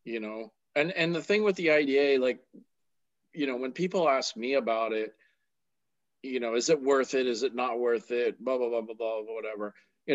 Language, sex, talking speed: English, male, 215 wpm